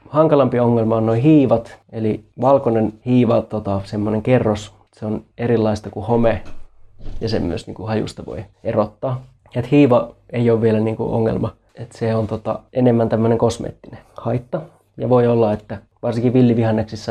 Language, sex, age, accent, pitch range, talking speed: Finnish, male, 20-39, native, 110-120 Hz, 160 wpm